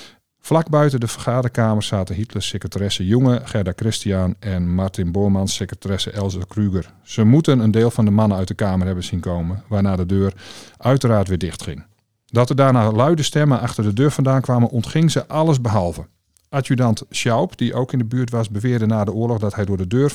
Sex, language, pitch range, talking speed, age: male, Dutch, 95-115 Hz, 200 wpm, 40-59